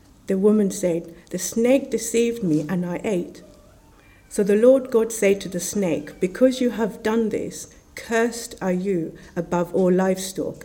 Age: 50-69